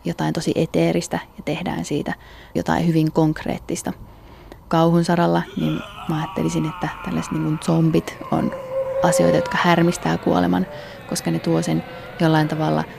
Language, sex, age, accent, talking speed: Finnish, female, 20-39, native, 130 wpm